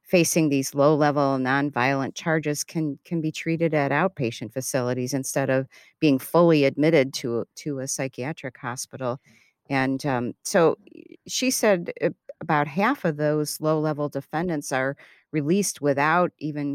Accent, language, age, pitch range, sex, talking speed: American, English, 50-69, 135-160 Hz, female, 135 wpm